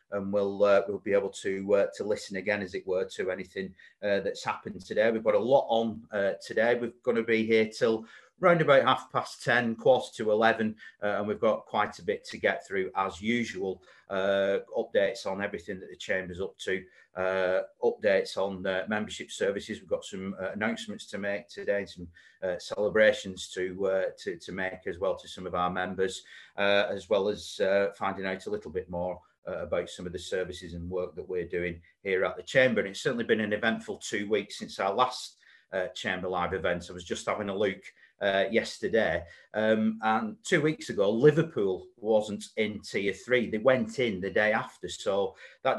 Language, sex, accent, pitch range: English, male, British, 95-160 Hz